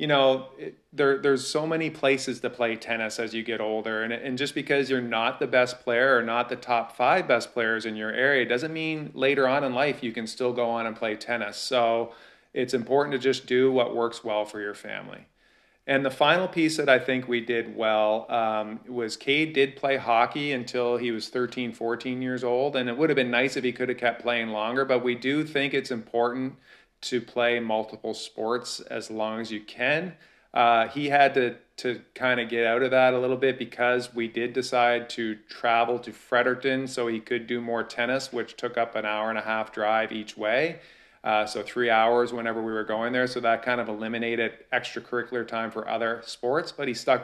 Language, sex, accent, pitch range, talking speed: English, male, American, 115-130 Hz, 220 wpm